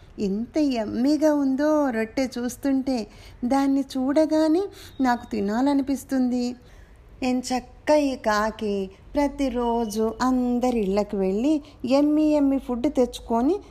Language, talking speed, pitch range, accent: Telugu, 90 wpm, 215-285 Hz, native